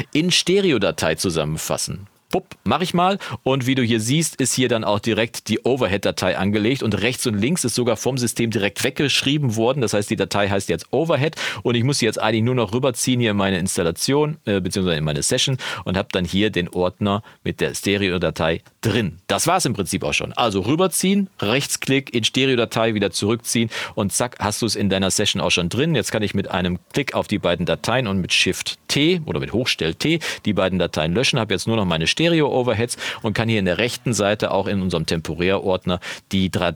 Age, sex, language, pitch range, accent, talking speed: 40-59, male, German, 95-125 Hz, German, 210 wpm